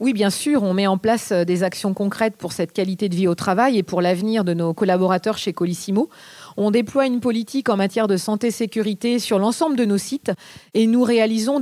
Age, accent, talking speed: 40-59, French, 210 wpm